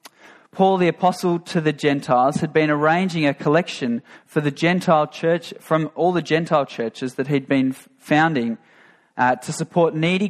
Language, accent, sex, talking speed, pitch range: English, Australian, male, 165 wpm, 140-180 Hz